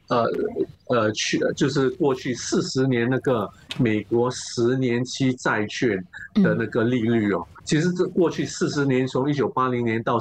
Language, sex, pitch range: Chinese, male, 115-165 Hz